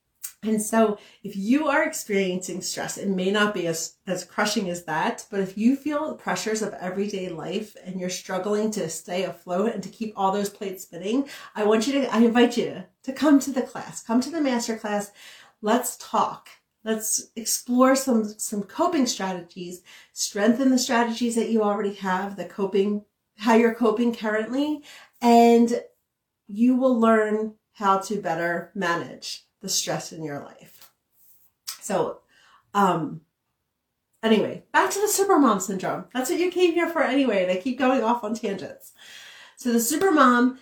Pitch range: 190-240 Hz